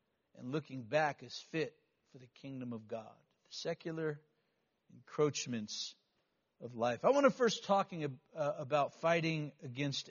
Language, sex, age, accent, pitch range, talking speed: English, male, 60-79, American, 155-220 Hz, 130 wpm